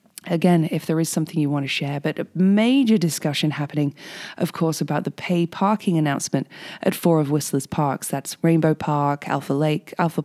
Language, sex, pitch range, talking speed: English, female, 150-185 Hz, 185 wpm